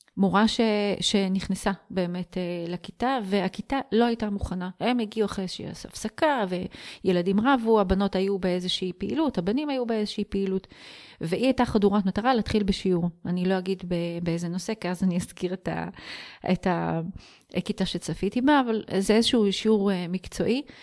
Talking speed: 145 wpm